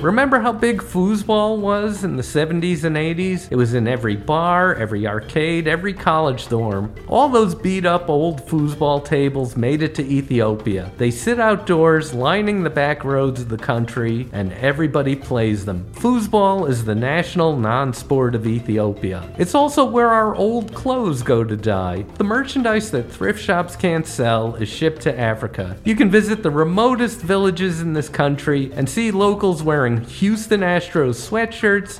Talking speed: 165 wpm